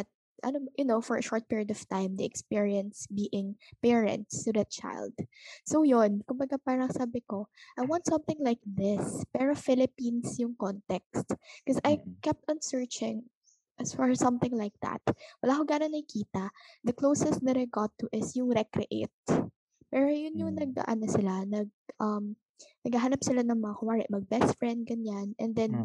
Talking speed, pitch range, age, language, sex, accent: 165 wpm, 210-260 Hz, 20-39, Filipino, female, native